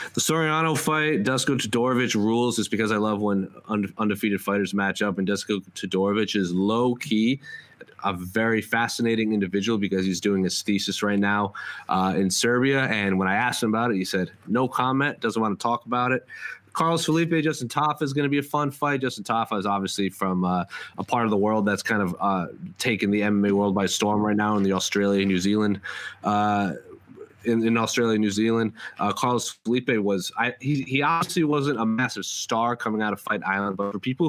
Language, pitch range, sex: English, 100-130 Hz, male